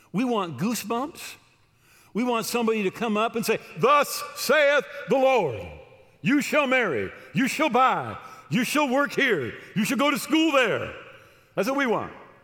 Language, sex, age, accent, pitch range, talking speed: English, male, 50-69, American, 145-235 Hz, 170 wpm